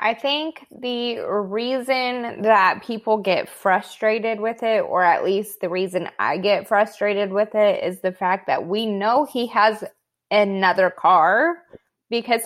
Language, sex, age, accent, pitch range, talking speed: English, female, 20-39, American, 180-225 Hz, 150 wpm